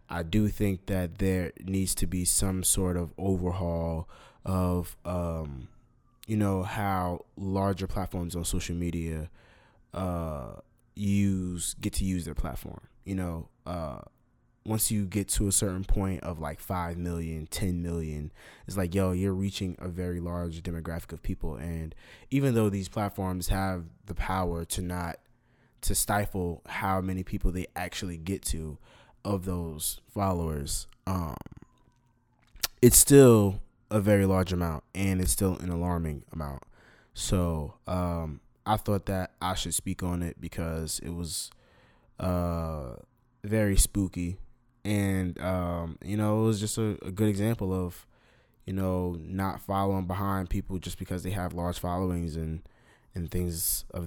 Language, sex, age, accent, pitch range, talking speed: English, male, 20-39, American, 85-100 Hz, 150 wpm